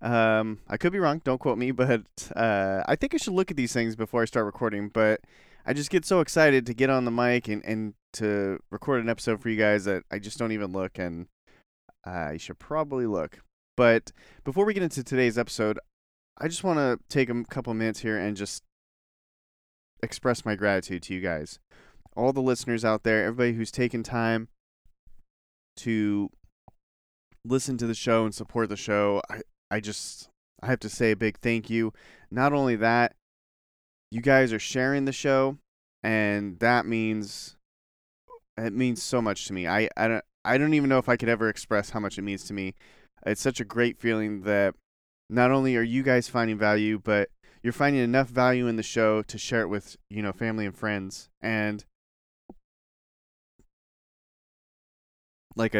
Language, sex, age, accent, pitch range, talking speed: English, male, 30-49, American, 105-125 Hz, 190 wpm